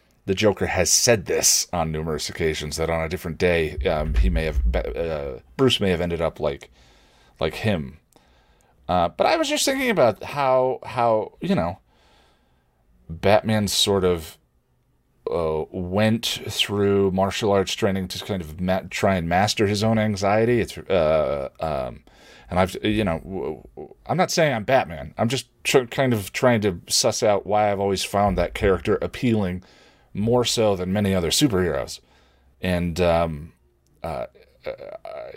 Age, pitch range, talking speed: 40-59, 75-105 Hz, 160 wpm